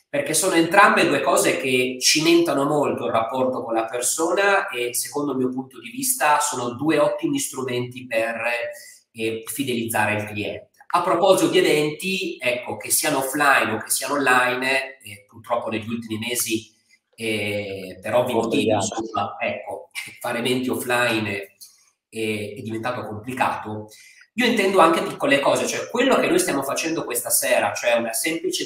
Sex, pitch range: male, 115-170 Hz